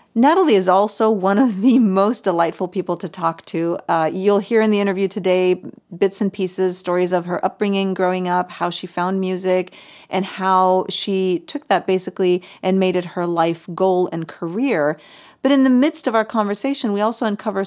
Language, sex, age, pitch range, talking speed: English, female, 30-49, 175-205 Hz, 190 wpm